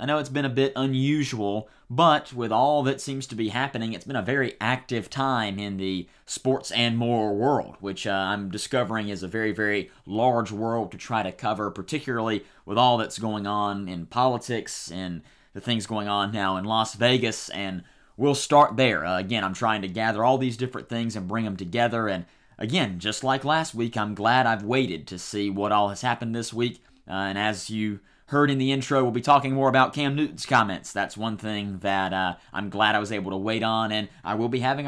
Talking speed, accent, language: 220 wpm, American, English